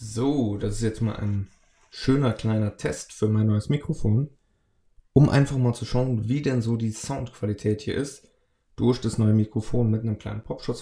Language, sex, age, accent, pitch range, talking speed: German, male, 20-39, German, 110-120 Hz, 185 wpm